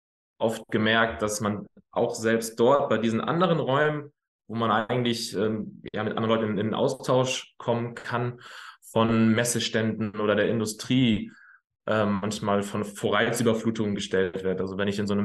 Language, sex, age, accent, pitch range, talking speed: German, male, 20-39, German, 105-115 Hz, 160 wpm